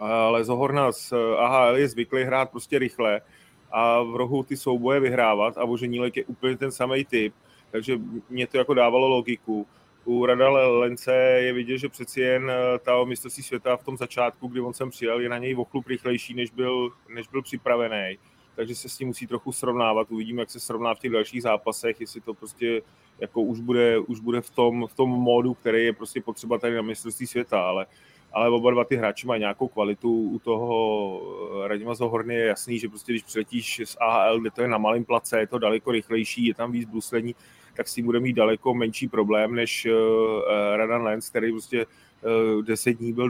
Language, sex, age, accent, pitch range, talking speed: Czech, male, 30-49, native, 110-125 Hz, 200 wpm